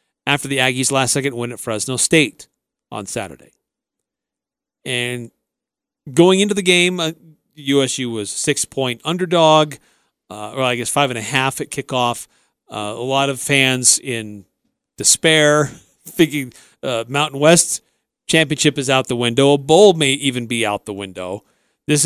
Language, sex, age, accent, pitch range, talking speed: English, male, 40-59, American, 125-155 Hz, 140 wpm